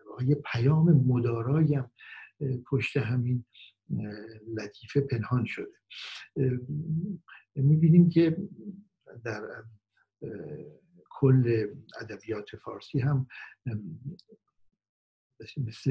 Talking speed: 65 wpm